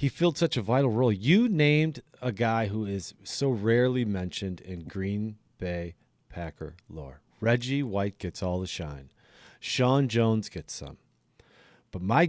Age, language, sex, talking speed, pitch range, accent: 40-59, English, male, 155 wpm, 95-150 Hz, American